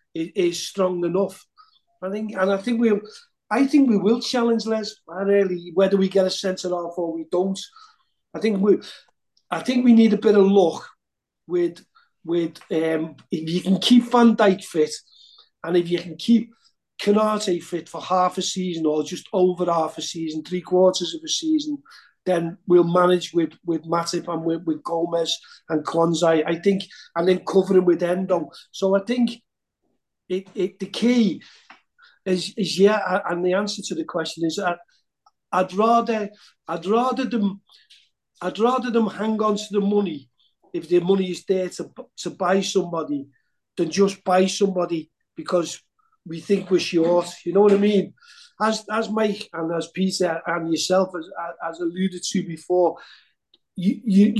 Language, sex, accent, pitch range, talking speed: English, male, British, 170-215 Hz, 175 wpm